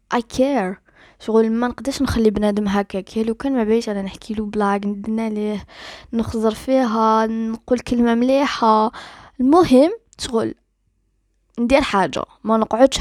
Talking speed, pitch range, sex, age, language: 130 wpm, 195-240 Hz, female, 20-39, Arabic